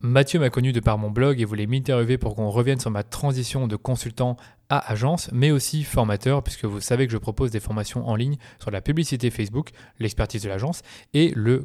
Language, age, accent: French, 20-39, French